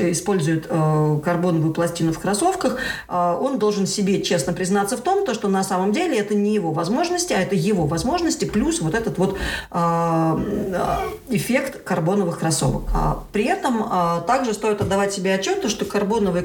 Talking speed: 165 wpm